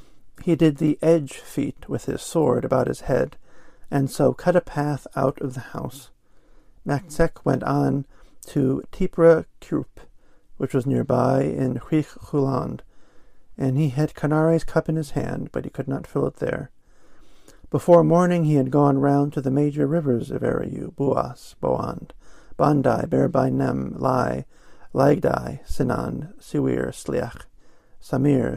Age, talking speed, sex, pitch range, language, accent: 50-69, 140 wpm, male, 130-150 Hz, English, American